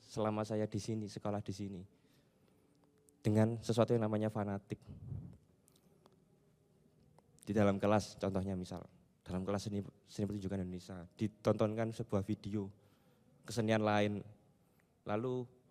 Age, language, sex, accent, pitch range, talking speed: 20-39, Indonesian, male, native, 105-130 Hz, 110 wpm